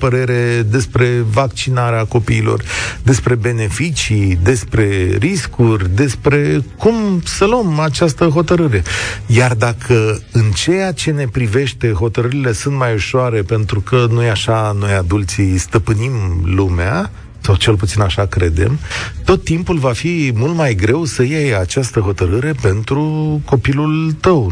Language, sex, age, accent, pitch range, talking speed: Romanian, male, 40-59, native, 105-145 Hz, 125 wpm